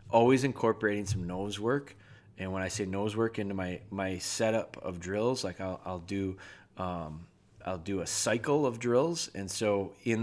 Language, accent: English, American